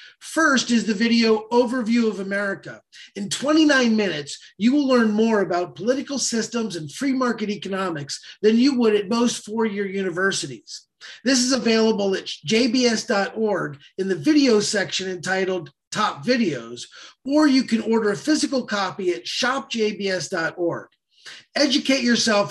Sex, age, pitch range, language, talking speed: male, 30-49, 185-235 Hz, English, 135 wpm